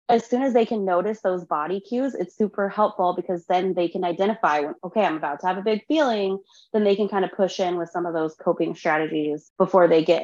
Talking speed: 245 wpm